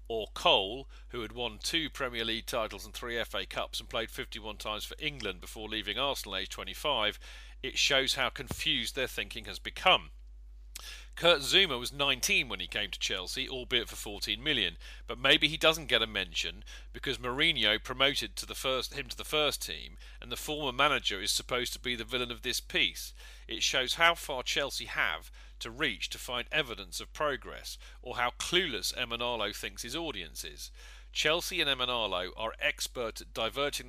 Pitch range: 110-145 Hz